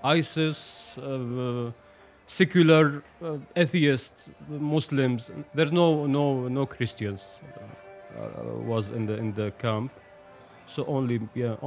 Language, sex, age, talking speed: Dutch, male, 30-49, 115 wpm